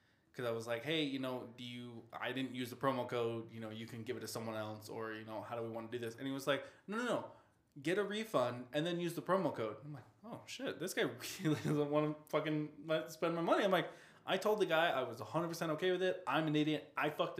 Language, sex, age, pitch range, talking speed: English, male, 20-39, 115-150 Hz, 285 wpm